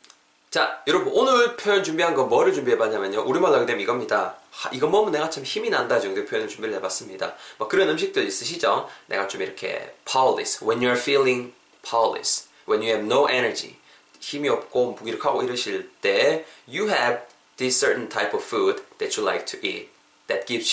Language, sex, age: Korean, male, 20-39